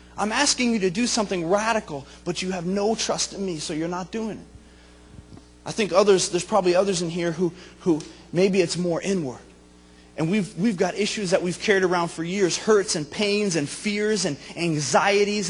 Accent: American